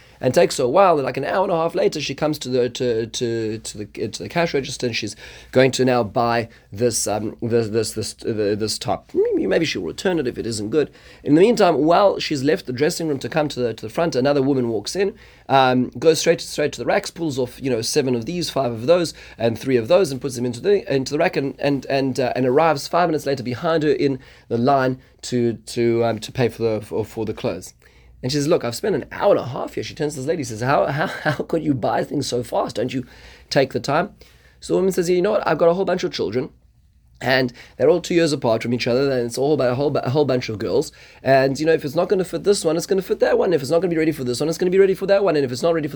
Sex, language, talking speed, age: male, English, 290 wpm, 30-49